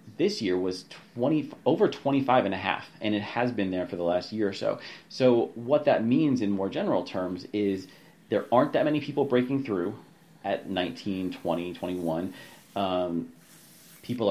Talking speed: 170 wpm